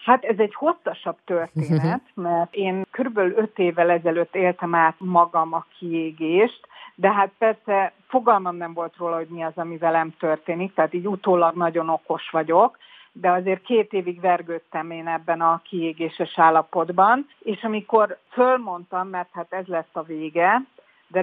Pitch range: 170-230 Hz